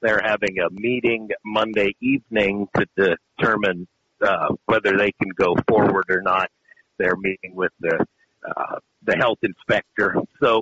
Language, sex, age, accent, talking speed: English, male, 50-69, American, 140 wpm